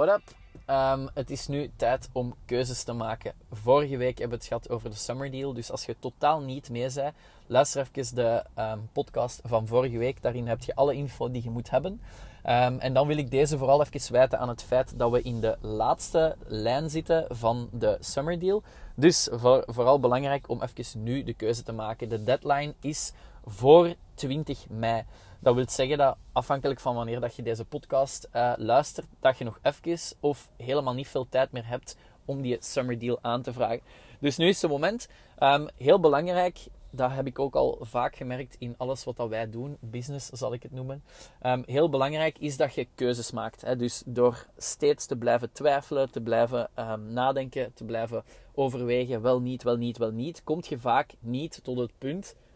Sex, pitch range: male, 120-140 Hz